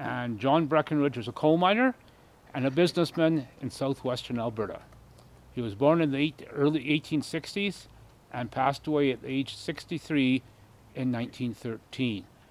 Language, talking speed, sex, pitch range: English, 135 wpm, male, 120-150 Hz